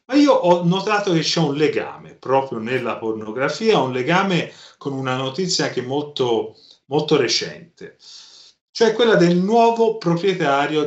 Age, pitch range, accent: 40-59, 120-185 Hz, native